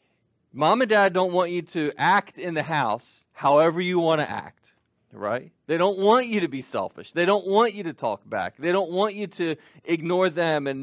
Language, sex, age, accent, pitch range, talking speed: English, male, 40-59, American, 130-175 Hz, 215 wpm